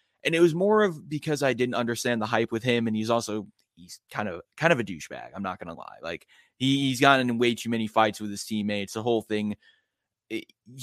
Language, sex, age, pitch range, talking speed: English, male, 20-39, 105-130 Hz, 240 wpm